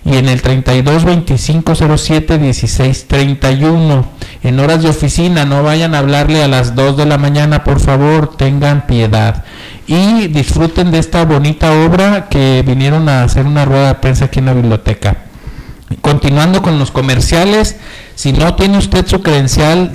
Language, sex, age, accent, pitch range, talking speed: Spanish, male, 50-69, Mexican, 130-165 Hz, 150 wpm